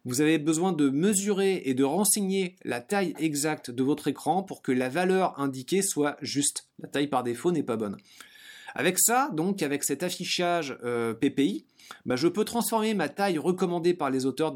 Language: French